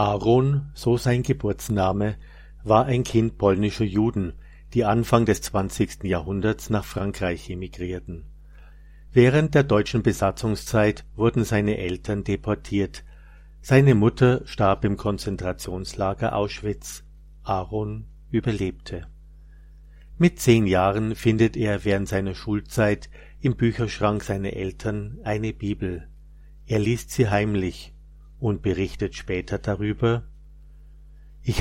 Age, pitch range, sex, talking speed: 50-69, 90-115 Hz, male, 105 wpm